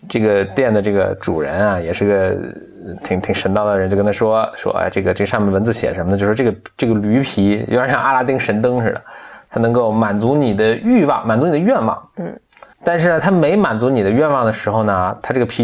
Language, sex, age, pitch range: Chinese, male, 20-39, 100-130 Hz